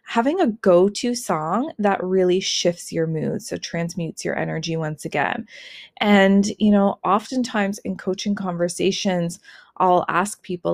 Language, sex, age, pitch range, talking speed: English, female, 20-39, 170-205 Hz, 140 wpm